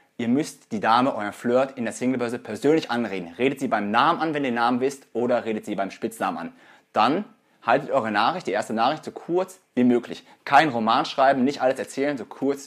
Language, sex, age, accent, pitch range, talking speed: German, male, 30-49, German, 115-150 Hz, 220 wpm